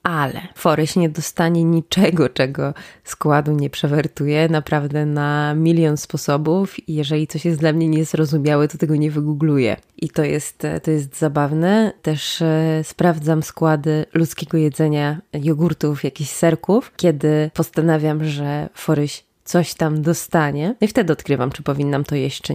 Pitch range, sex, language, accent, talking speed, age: 150-170 Hz, female, Polish, native, 140 wpm, 20-39